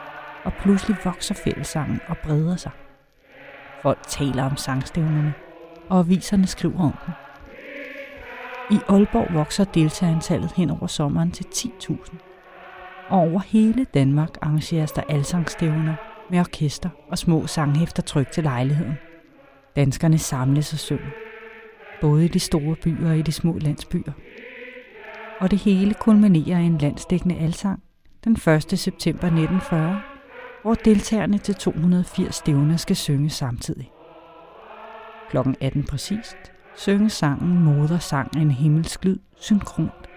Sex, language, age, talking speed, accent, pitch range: female, Danish, 40-59, 125 wpm, native, 155-210 Hz